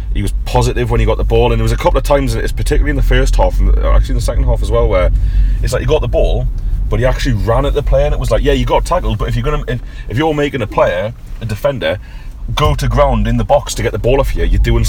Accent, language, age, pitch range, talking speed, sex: British, English, 30-49, 100-115 Hz, 305 wpm, male